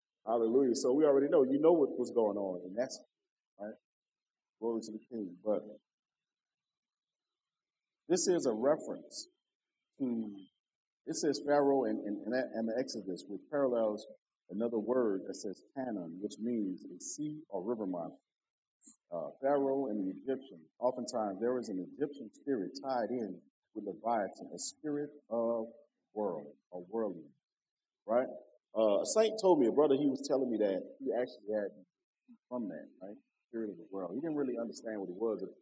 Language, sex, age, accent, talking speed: English, male, 50-69, American, 175 wpm